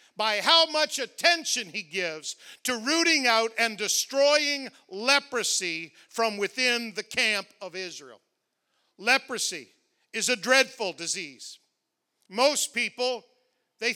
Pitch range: 215-270 Hz